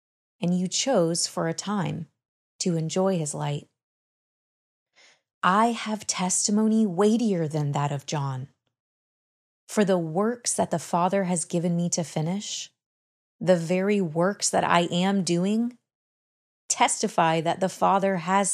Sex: female